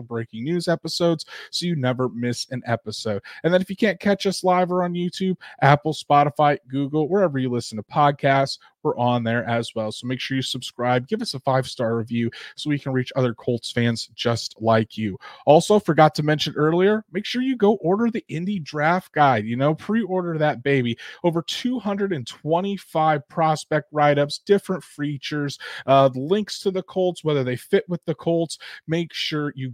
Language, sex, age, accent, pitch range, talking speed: English, male, 30-49, American, 125-160 Hz, 185 wpm